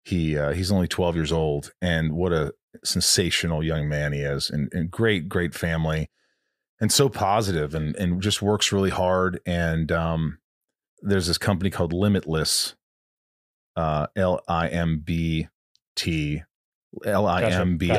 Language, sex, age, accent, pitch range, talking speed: English, male, 30-49, American, 80-100 Hz, 155 wpm